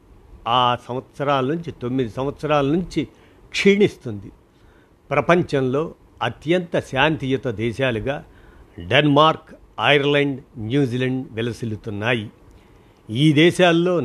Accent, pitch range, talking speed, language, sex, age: native, 115-150 Hz, 75 wpm, Telugu, male, 50-69